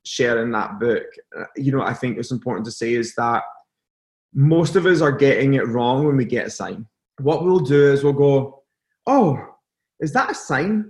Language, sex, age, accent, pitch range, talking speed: English, male, 20-39, British, 135-160 Hz, 200 wpm